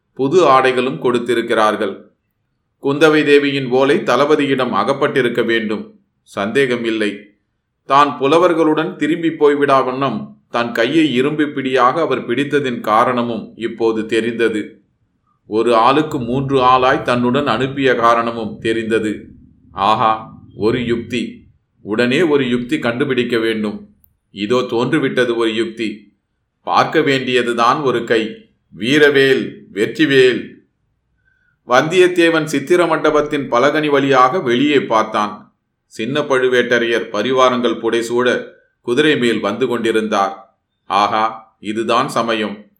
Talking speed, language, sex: 95 wpm, Tamil, male